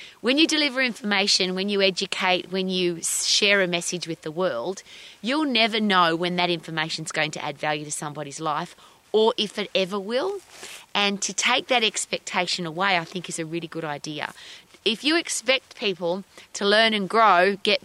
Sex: female